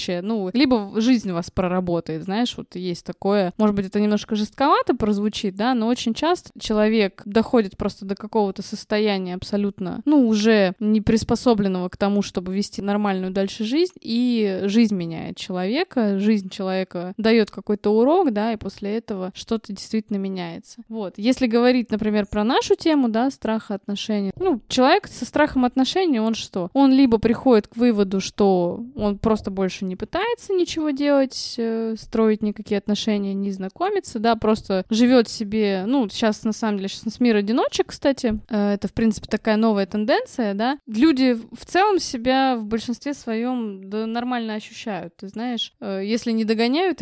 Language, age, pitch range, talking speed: Russian, 20-39, 205-245 Hz, 160 wpm